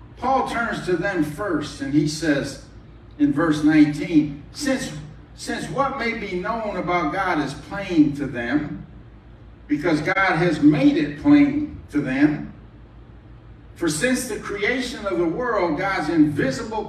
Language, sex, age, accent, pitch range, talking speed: English, male, 60-79, American, 150-250 Hz, 140 wpm